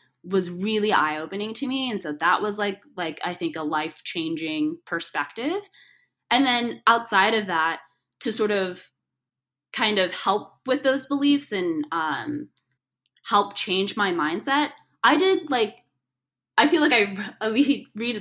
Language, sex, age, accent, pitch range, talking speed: English, female, 10-29, American, 170-235 Hz, 150 wpm